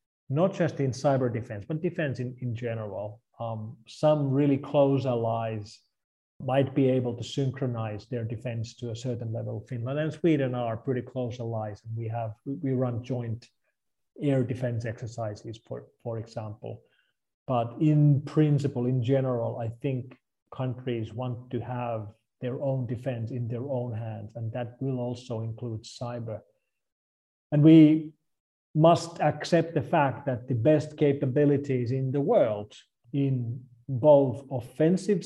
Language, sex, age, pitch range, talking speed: Ukrainian, male, 30-49, 115-145 Hz, 145 wpm